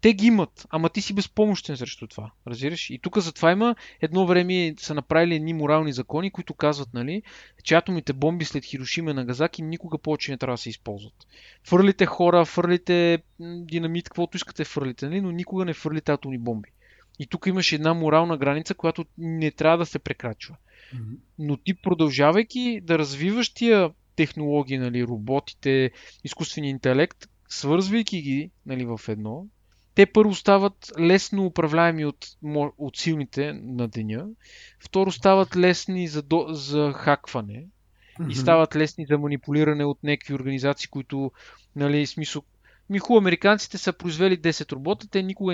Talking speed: 155 wpm